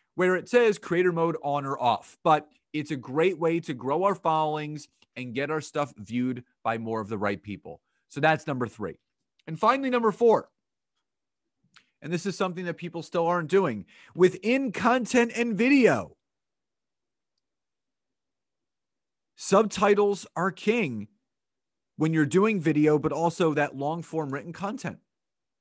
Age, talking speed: 30-49, 150 wpm